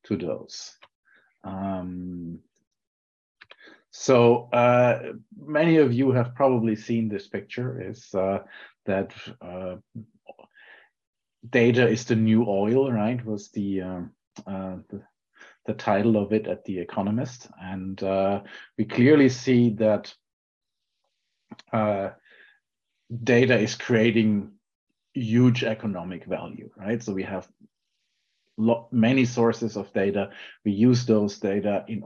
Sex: male